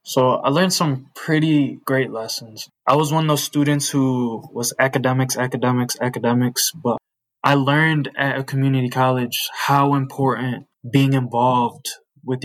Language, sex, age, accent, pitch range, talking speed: English, male, 20-39, American, 120-135 Hz, 145 wpm